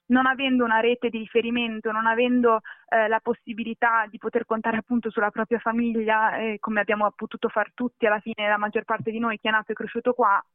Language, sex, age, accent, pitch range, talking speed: Italian, female, 20-39, native, 225-260 Hz, 210 wpm